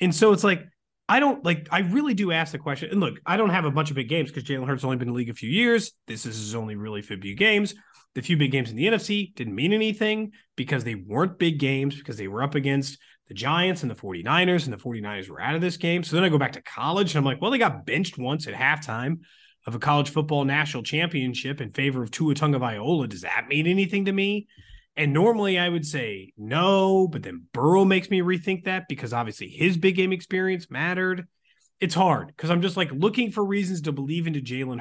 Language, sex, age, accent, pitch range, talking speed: English, male, 30-49, American, 130-185 Hz, 245 wpm